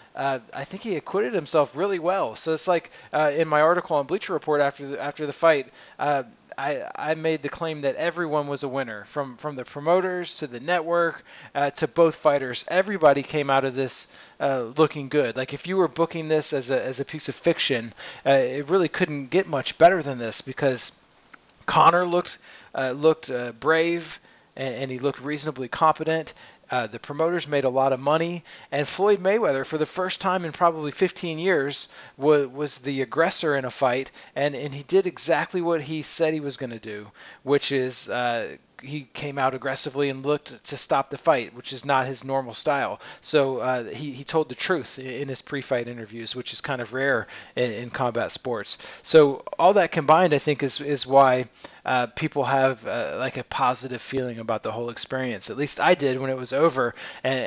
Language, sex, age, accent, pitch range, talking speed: English, male, 20-39, American, 135-160 Hz, 205 wpm